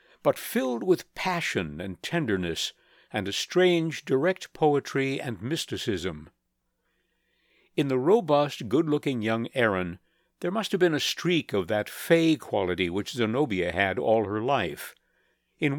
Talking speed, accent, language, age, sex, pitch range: 135 wpm, American, English, 60-79, male, 110-170 Hz